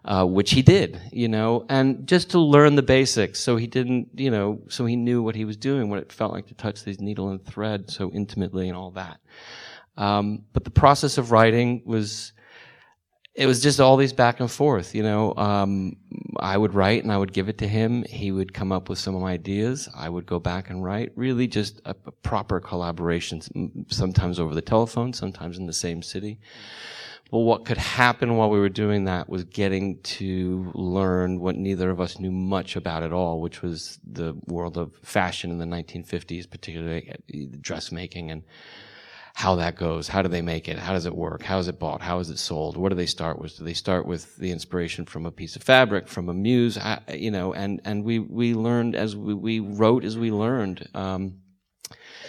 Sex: male